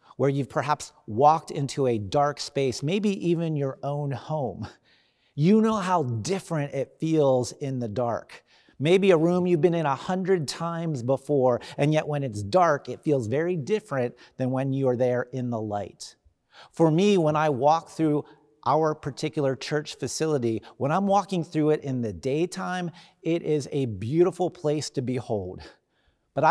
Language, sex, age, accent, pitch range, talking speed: English, male, 40-59, American, 130-170 Hz, 170 wpm